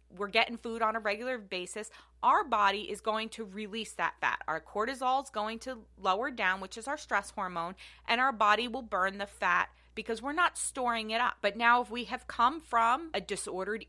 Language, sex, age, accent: English, female, 20-39, American